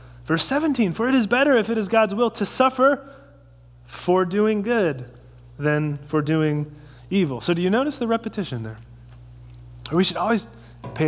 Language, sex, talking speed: English, male, 170 wpm